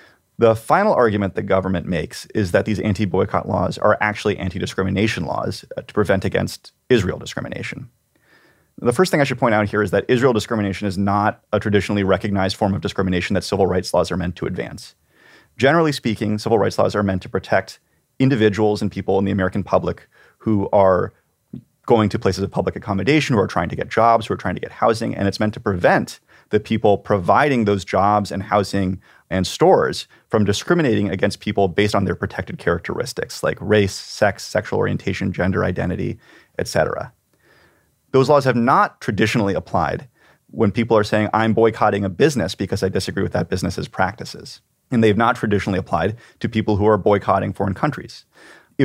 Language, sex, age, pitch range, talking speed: English, male, 30-49, 95-110 Hz, 185 wpm